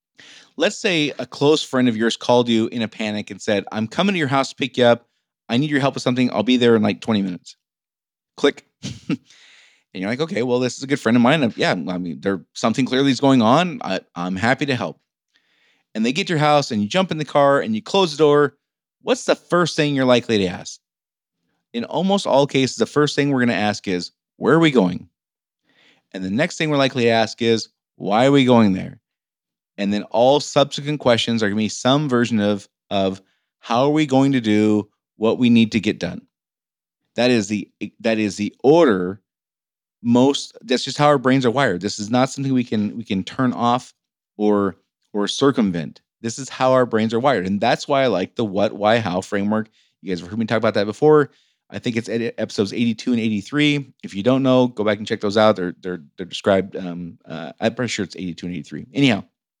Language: English